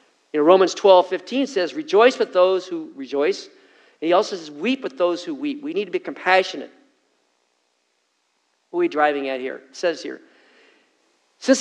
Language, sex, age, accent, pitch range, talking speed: English, male, 50-69, American, 155-255 Hz, 180 wpm